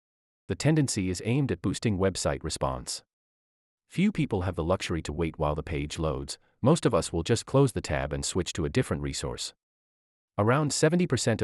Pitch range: 75-125 Hz